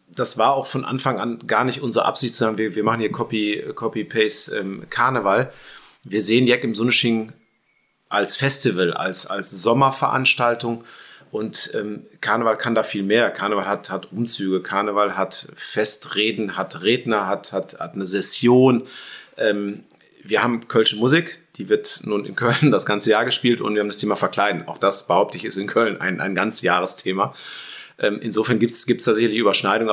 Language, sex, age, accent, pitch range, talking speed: German, male, 30-49, German, 95-120 Hz, 170 wpm